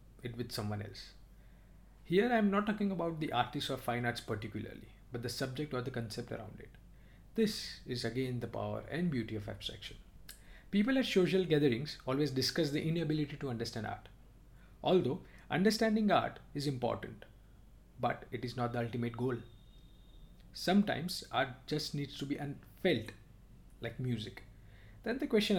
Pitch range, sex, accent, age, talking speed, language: 115-150 Hz, male, Indian, 50-69, 160 wpm, English